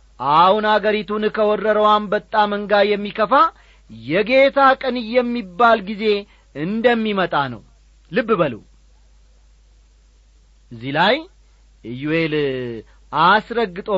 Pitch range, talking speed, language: 140-210 Hz, 75 wpm, Amharic